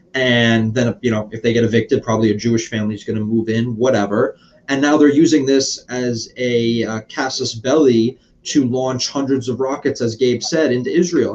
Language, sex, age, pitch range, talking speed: English, male, 30-49, 115-130 Hz, 200 wpm